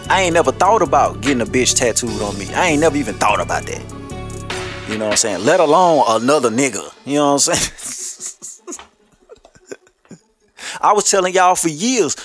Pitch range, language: 125-200 Hz, English